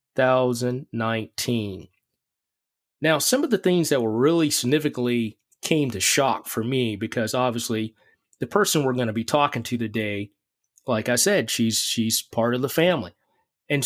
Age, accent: 30-49, American